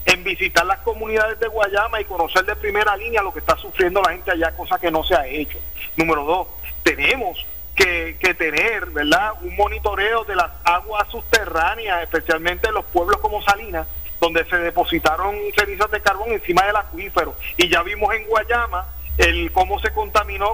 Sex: male